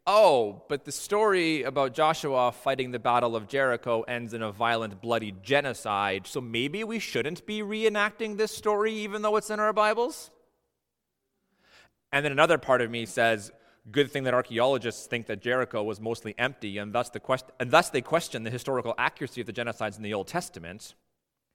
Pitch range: 135-215 Hz